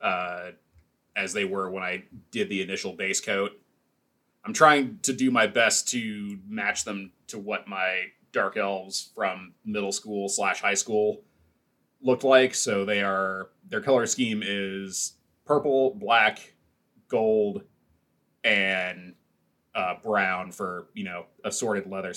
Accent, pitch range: American, 95-130 Hz